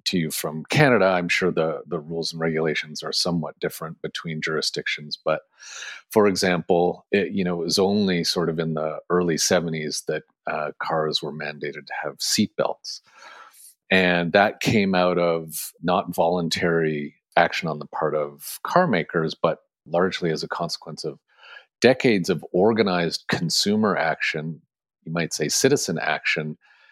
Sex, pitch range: male, 80-115 Hz